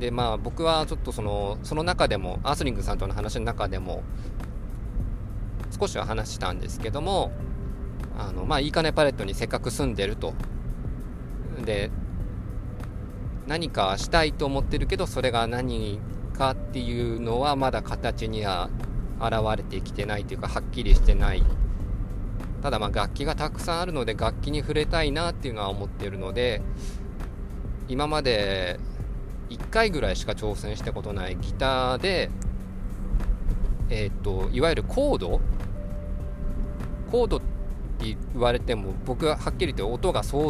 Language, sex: Japanese, male